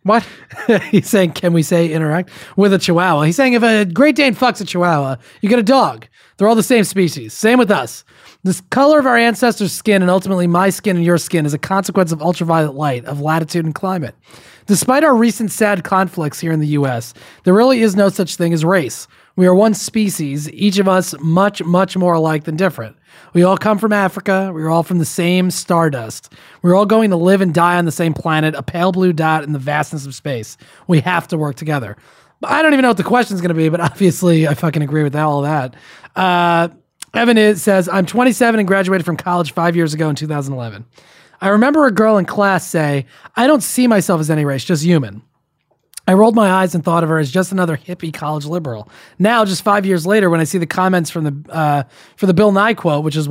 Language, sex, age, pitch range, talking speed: English, male, 30-49, 155-200 Hz, 230 wpm